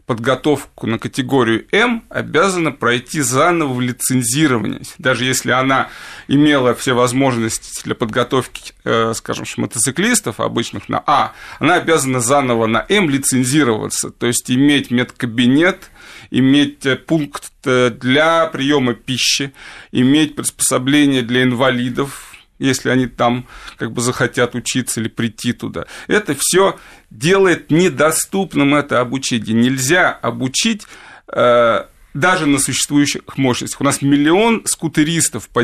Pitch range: 120-150 Hz